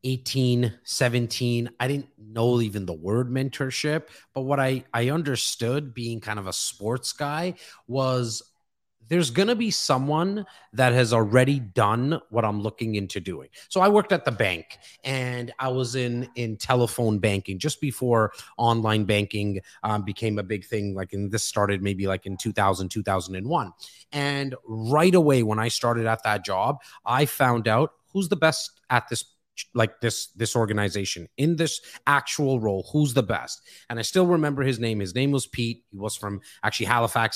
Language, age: English, 30-49